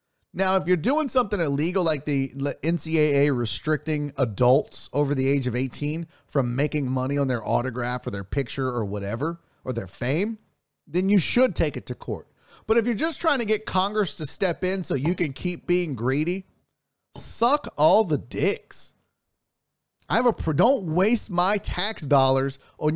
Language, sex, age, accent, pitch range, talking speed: English, male, 40-59, American, 135-210 Hz, 180 wpm